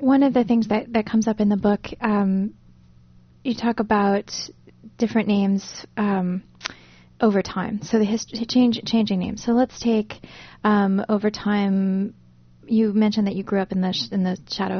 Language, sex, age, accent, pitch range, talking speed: English, female, 20-39, American, 180-215 Hz, 180 wpm